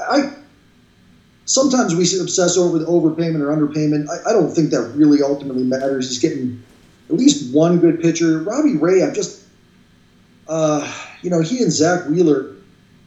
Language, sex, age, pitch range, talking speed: English, male, 30-49, 140-170 Hz, 160 wpm